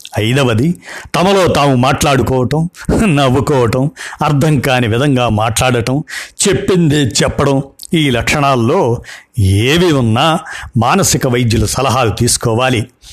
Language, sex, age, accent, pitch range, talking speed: Telugu, male, 50-69, native, 115-155 Hz, 85 wpm